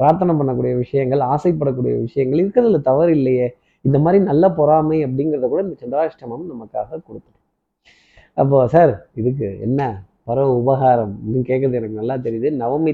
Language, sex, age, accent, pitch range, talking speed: Tamil, male, 20-39, native, 125-155 Hz, 145 wpm